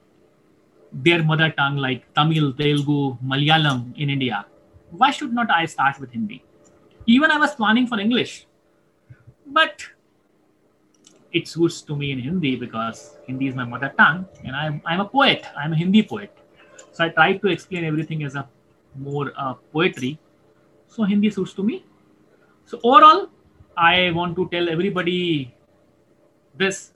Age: 30-49